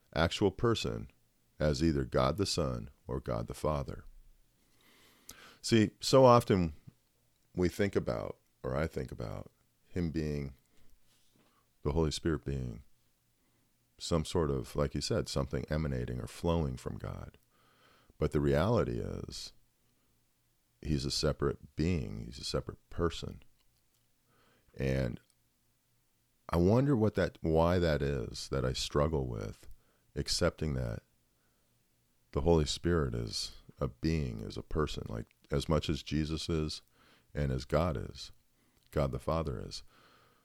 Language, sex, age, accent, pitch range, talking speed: English, male, 40-59, American, 65-85 Hz, 130 wpm